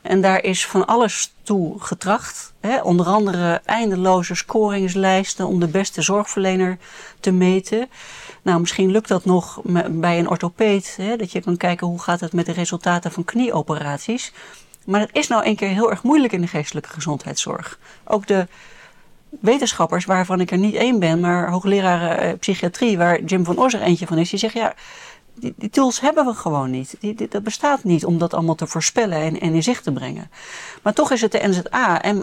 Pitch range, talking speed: 170-215 Hz, 195 wpm